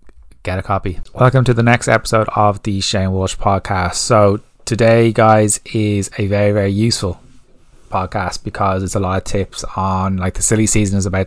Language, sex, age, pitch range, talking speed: English, male, 20-39, 95-105 Hz, 180 wpm